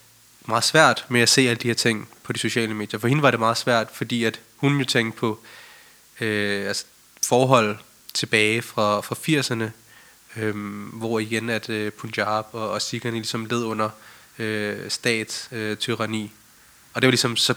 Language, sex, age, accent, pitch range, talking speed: Danish, male, 20-39, native, 110-125 Hz, 180 wpm